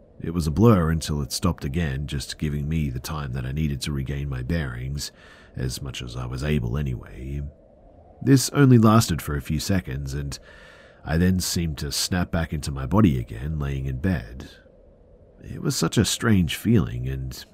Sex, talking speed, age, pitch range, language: male, 190 wpm, 40-59, 70-95 Hz, English